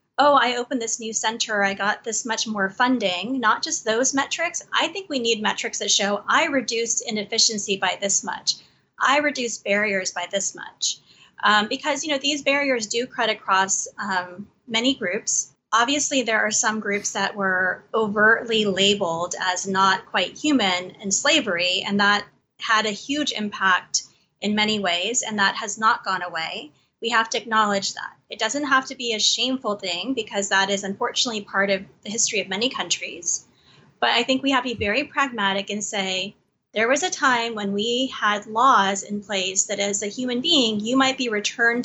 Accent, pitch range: American, 195-245 Hz